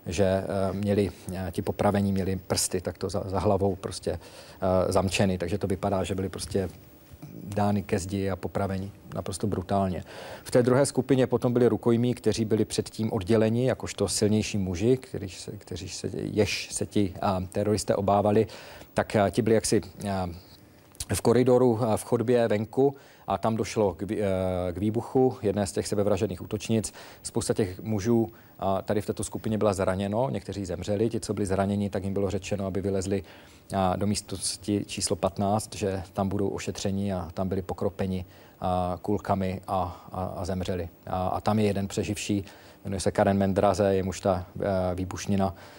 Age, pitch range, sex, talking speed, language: 40-59, 95-105 Hz, male, 165 wpm, Czech